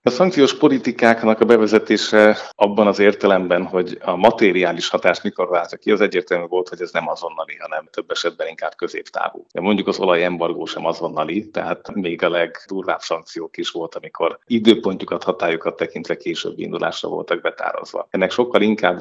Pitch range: 85-120 Hz